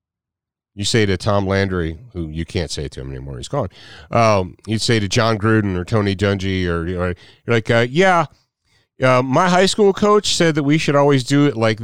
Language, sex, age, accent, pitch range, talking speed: English, male, 40-59, American, 95-130 Hz, 220 wpm